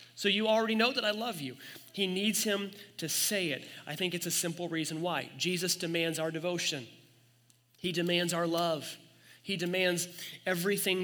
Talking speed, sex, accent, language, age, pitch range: 175 wpm, male, American, English, 30-49, 165-200 Hz